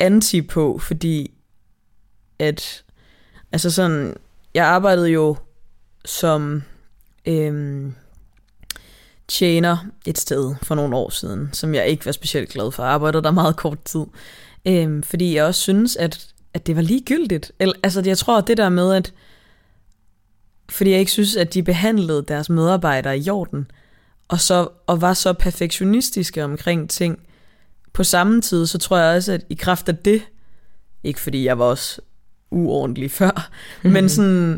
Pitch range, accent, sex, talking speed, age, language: 135-180 Hz, native, female, 150 wpm, 20-39, Danish